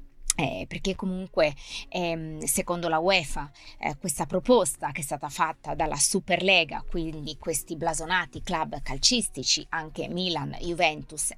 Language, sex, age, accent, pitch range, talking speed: Italian, female, 20-39, native, 155-195 Hz, 125 wpm